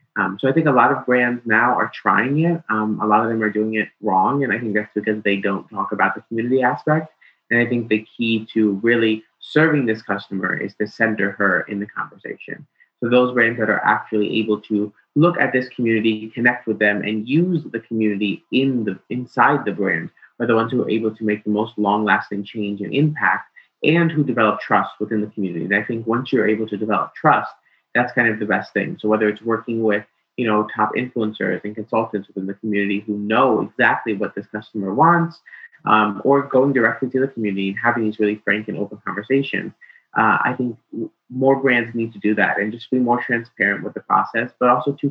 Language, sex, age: English, male, 30-49